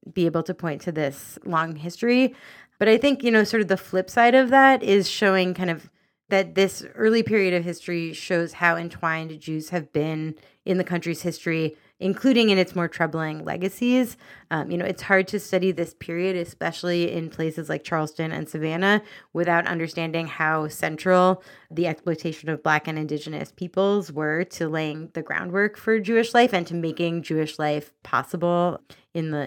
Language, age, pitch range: English, 30-49, 160-195 Hz